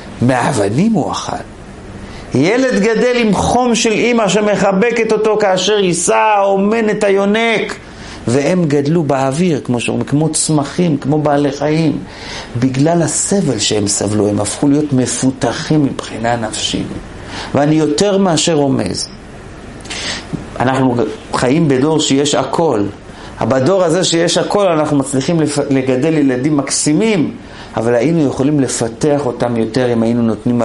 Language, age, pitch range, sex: Hebrew, 40-59, 130-195 Hz, male